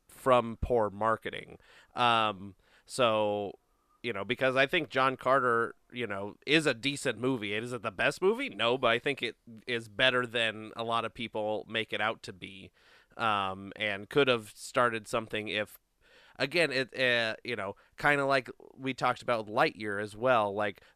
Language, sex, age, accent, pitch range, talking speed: English, male, 30-49, American, 110-125 Hz, 180 wpm